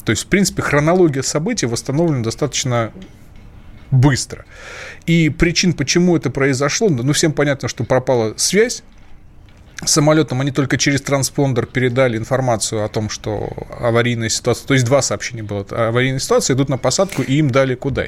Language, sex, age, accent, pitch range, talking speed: Russian, male, 20-39, native, 115-150 Hz, 155 wpm